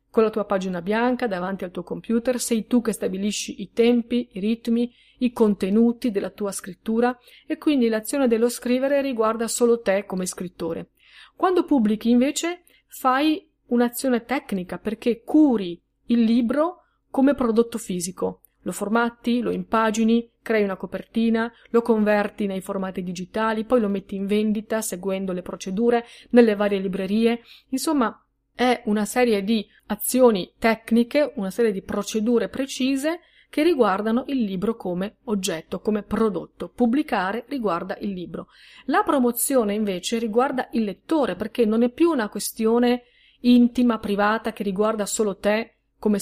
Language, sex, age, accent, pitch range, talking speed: Italian, female, 30-49, native, 205-250 Hz, 145 wpm